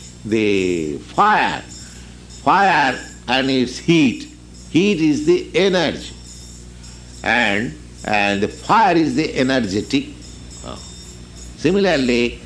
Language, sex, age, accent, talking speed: English, male, 70-89, Indian, 85 wpm